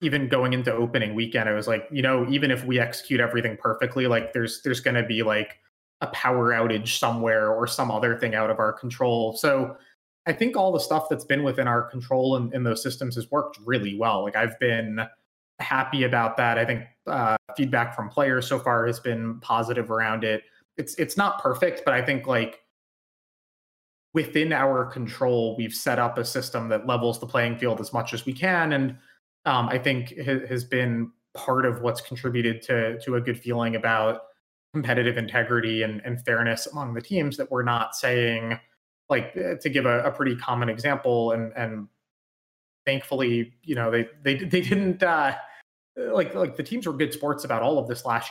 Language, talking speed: English, 200 wpm